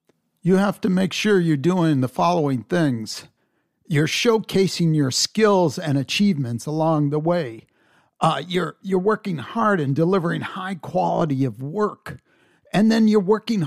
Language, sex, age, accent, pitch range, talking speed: English, male, 50-69, American, 150-205 Hz, 150 wpm